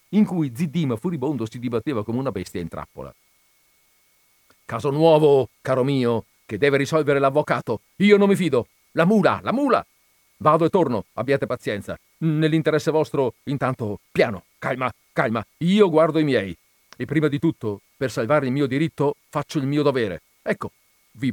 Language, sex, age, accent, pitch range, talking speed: Italian, male, 40-59, native, 115-195 Hz, 160 wpm